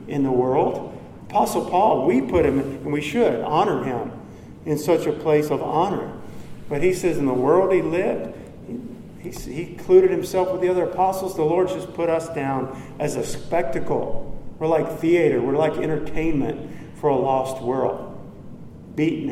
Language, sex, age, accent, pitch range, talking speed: English, male, 50-69, American, 135-155 Hz, 175 wpm